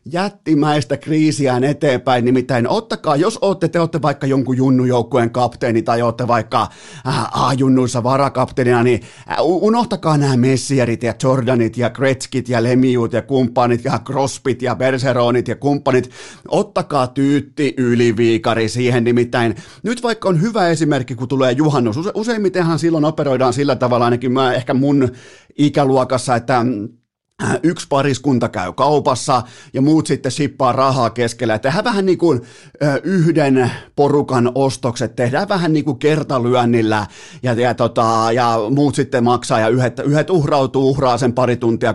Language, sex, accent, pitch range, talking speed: Finnish, male, native, 120-145 Hz, 145 wpm